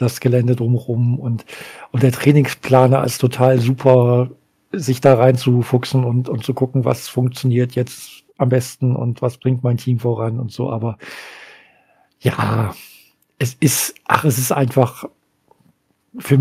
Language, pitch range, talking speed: German, 120-140 Hz, 145 wpm